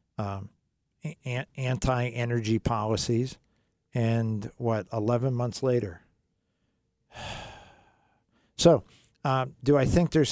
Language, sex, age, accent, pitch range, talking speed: English, male, 50-69, American, 115-145 Hz, 80 wpm